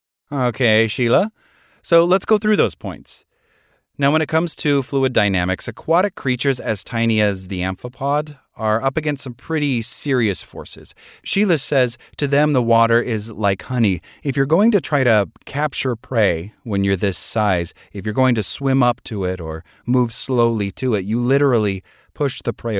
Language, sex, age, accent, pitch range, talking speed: English, male, 30-49, American, 100-135 Hz, 180 wpm